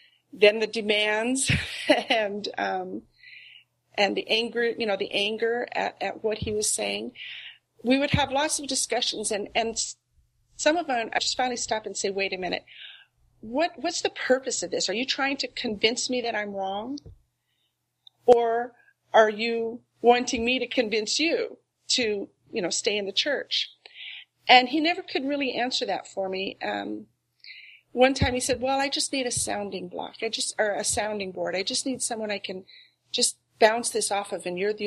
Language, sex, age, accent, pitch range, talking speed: English, female, 40-59, American, 210-265 Hz, 190 wpm